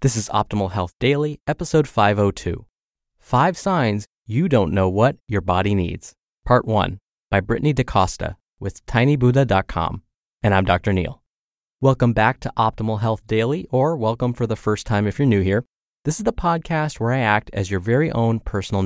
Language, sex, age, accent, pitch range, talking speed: English, male, 20-39, American, 100-135 Hz, 175 wpm